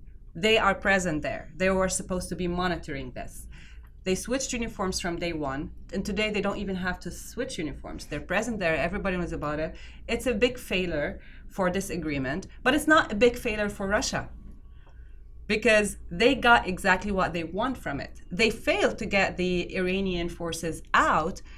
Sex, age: female, 30-49